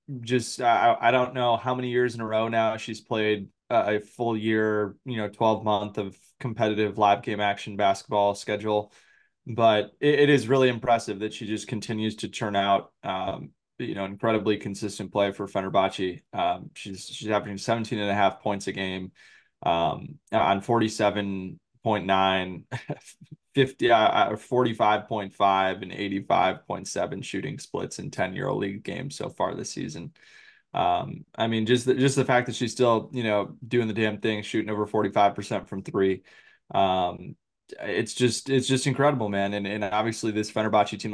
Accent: American